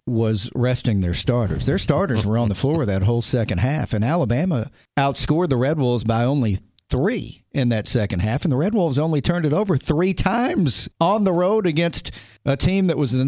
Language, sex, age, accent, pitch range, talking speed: English, male, 40-59, American, 110-140 Hz, 210 wpm